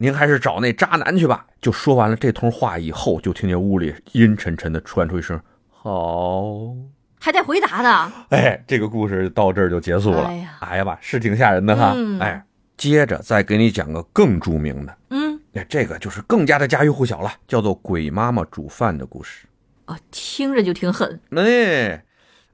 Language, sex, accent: Chinese, male, native